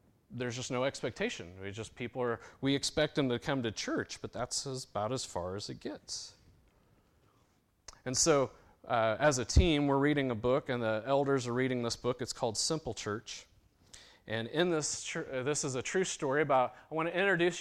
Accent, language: American, English